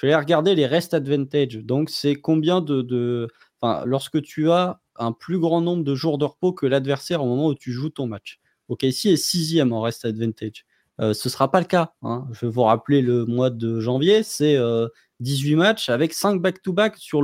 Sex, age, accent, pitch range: male, 20-39, French, 115-150 Hz